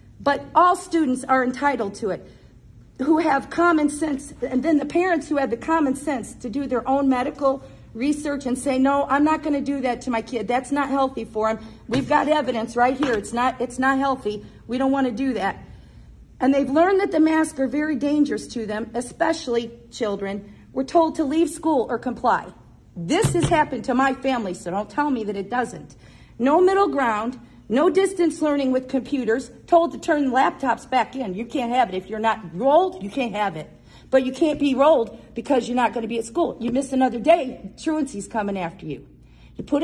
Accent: American